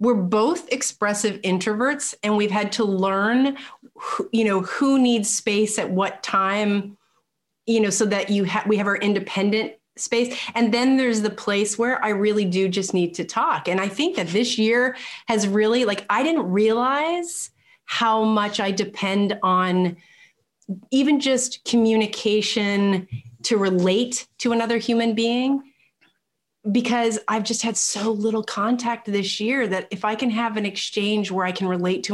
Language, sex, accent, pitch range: English, female, American, 190-230 Hz